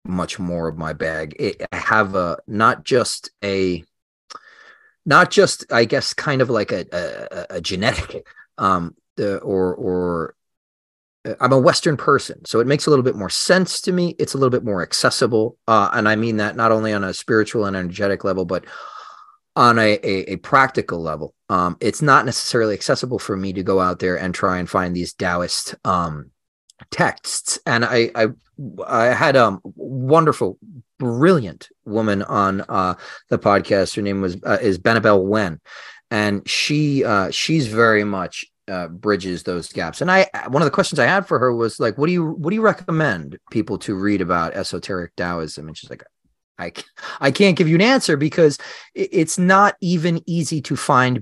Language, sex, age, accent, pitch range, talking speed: English, male, 30-49, American, 95-155 Hz, 185 wpm